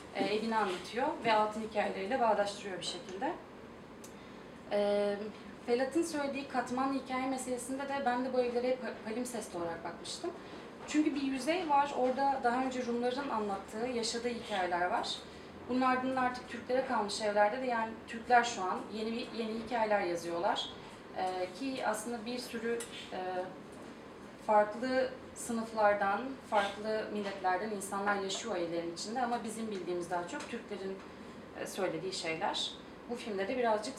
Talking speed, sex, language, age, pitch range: 125 wpm, female, Turkish, 30-49, 200-245 Hz